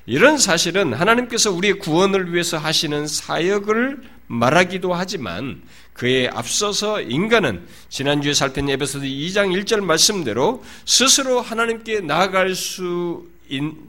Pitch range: 125-200 Hz